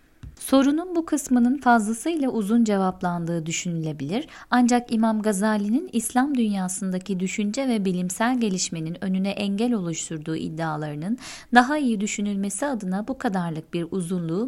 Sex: female